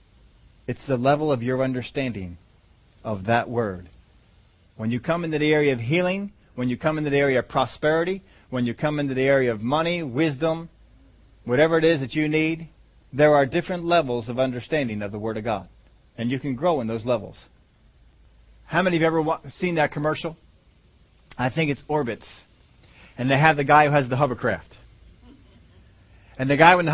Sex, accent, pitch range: male, American, 110-155 Hz